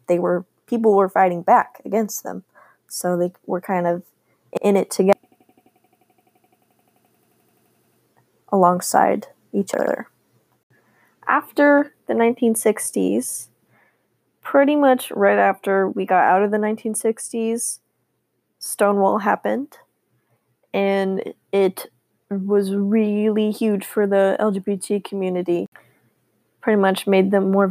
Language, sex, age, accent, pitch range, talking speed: English, female, 20-39, American, 195-230 Hz, 105 wpm